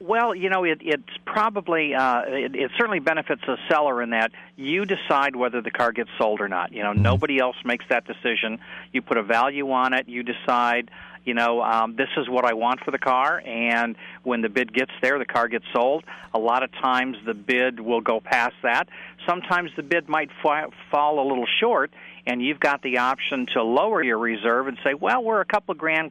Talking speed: 220 wpm